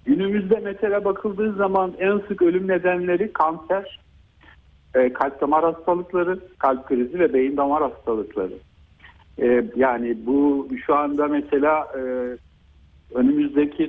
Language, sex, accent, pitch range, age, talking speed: Turkish, male, native, 120-155 Hz, 60-79, 105 wpm